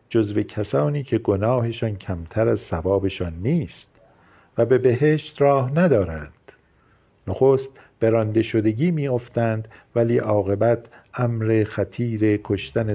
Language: Persian